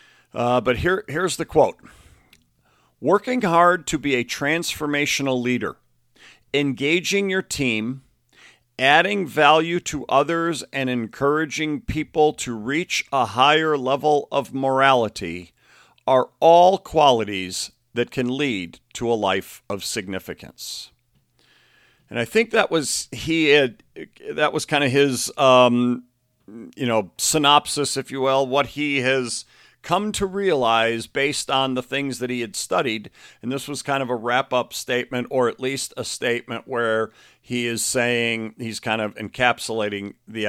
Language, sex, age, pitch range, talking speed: English, male, 50-69, 120-150 Hz, 140 wpm